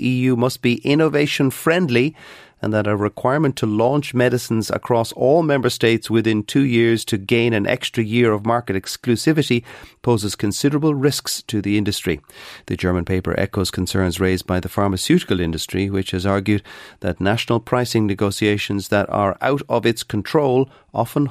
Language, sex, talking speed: English, male, 160 wpm